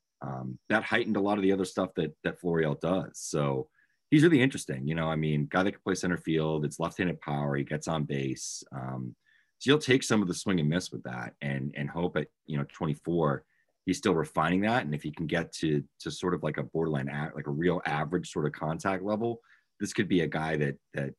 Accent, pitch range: American, 70-90 Hz